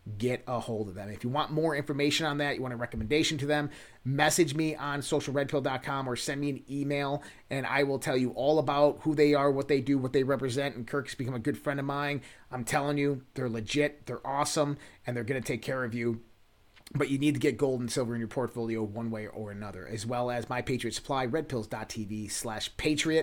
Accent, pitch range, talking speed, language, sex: American, 115-145 Hz, 230 wpm, English, male